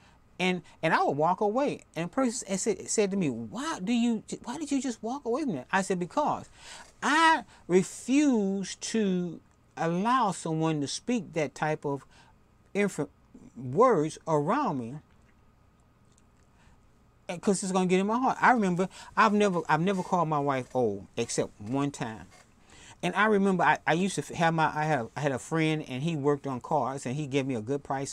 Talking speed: 185 wpm